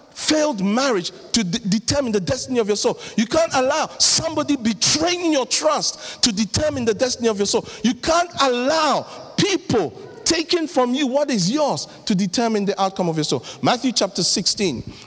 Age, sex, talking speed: 50-69, male, 170 wpm